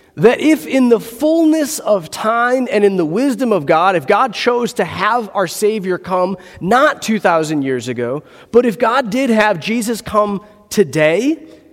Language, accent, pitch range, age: English, American, 180-265 Hz, 30-49